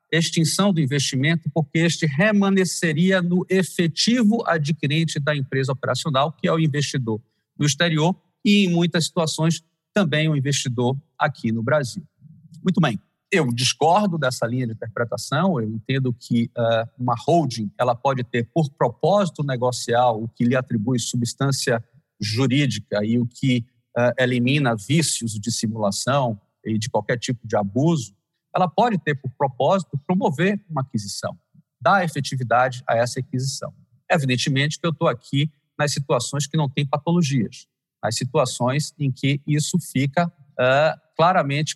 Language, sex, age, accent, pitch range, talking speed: Portuguese, male, 50-69, Brazilian, 125-170 Hz, 145 wpm